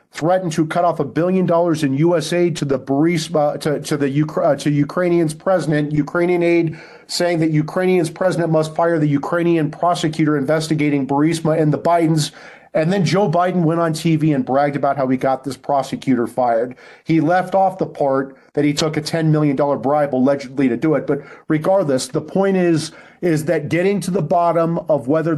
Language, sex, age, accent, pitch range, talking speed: English, male, 40-59, American, 145-170 Hz, 190 wpm